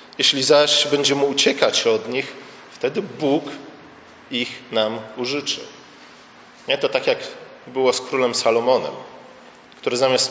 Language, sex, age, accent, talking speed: Polish, male, 40-59, native, 115 wpm